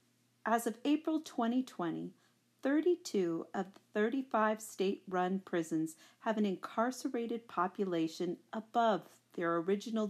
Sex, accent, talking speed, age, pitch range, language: female, American, 100 wpm, 40-59, 175-235 Hz, English